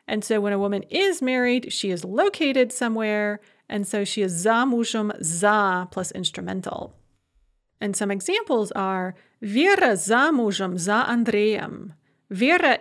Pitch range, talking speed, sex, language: 200-255 Hz, 130 wpm, female, English